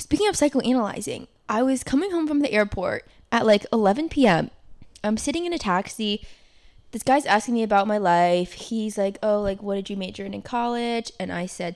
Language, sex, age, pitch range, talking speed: English, female, 10-29, 195-240 Hz, 205 wpm